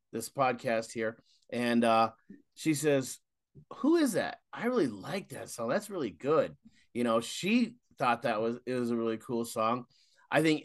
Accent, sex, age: American, male, 30-49